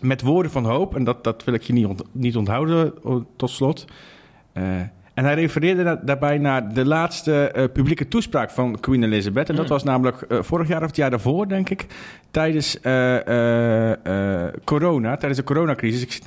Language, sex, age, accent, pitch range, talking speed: Dutch, male, 50-69, Dutch, 120-160 Hz, 190 wpm